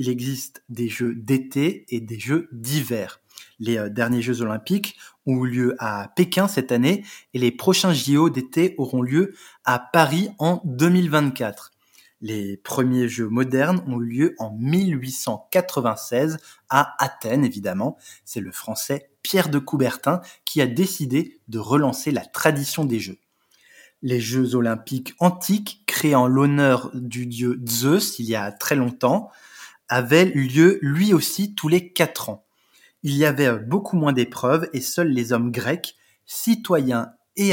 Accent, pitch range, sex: French, 125-170 Hz, male